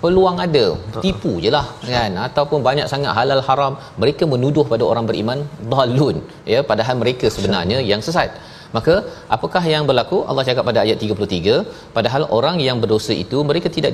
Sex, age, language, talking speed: male, 30-49, Malayalam, 165 wpm